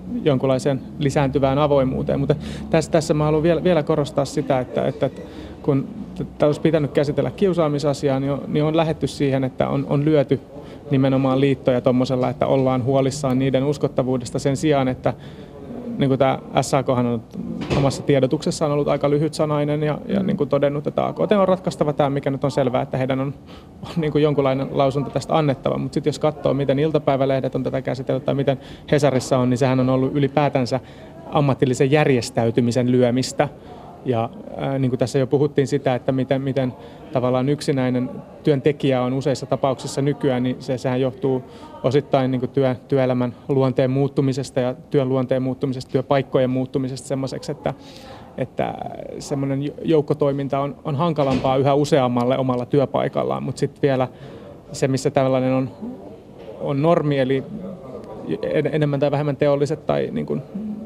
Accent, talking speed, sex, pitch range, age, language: native, 155 wpm, male, 130-150 Hz, 30-49, Finnish